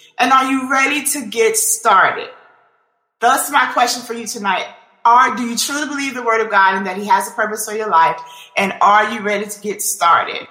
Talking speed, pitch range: 215 wpm, 190-240 Hz